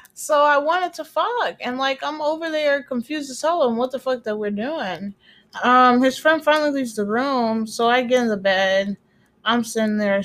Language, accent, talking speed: English, American, 210 wpm